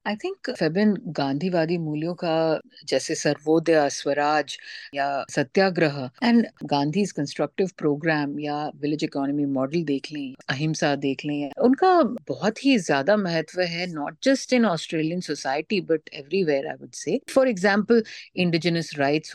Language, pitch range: Hindi, 150-200 Hz